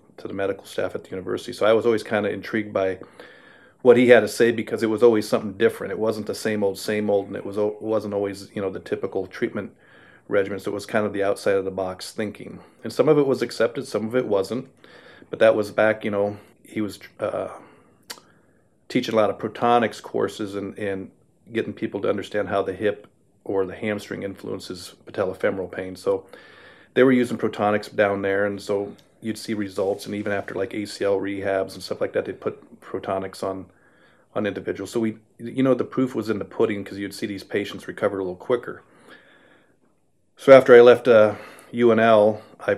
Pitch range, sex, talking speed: 100-110 Hz, male, 210 wpm